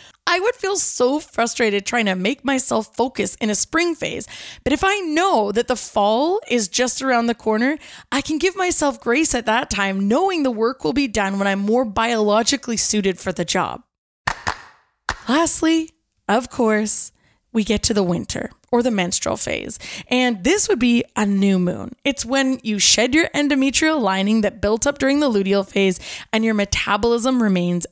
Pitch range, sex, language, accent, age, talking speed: 205-290 Hz, female, English, American, 20-39, 185 wpm